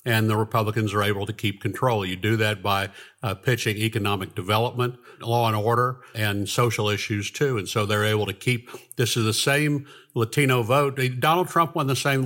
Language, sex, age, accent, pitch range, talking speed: English, male, 50-69, American, 110-135 Hz, 195 wpm